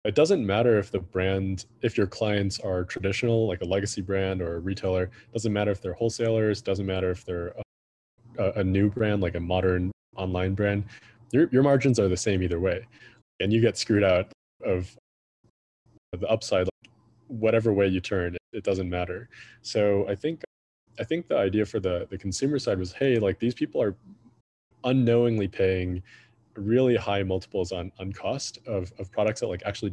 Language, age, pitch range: English, 20-39, 95-115 Hz